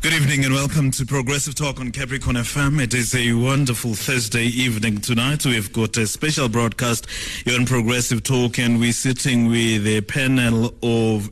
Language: English